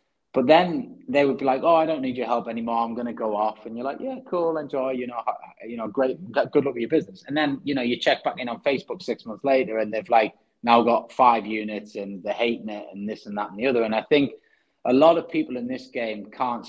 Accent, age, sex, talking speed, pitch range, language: British, 30-49, male, 275 wpm, 110-140 Hz, English